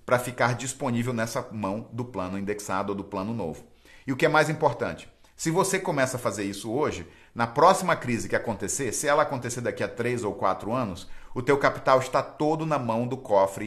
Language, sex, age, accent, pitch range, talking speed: English, male, 40-59, Brazilian, 115-150 Hz, 210 wpm